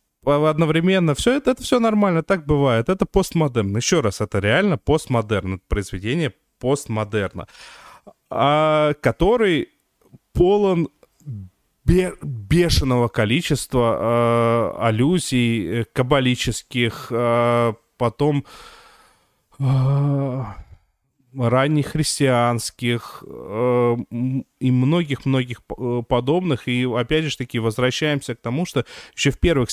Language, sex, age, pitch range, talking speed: Russian, male, 20-39, 115-145 Hz, 95 wpm